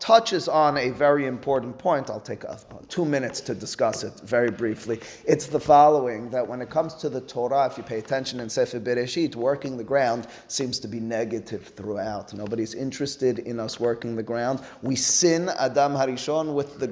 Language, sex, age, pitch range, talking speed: English, male, 30-49, 120-150 Hz, 190 wpm